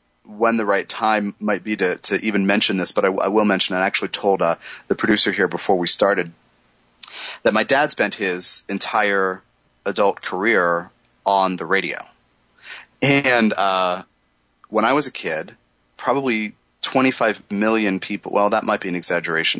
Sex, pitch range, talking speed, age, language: male, 95-125 Hz, 165 wpm, 30-49, English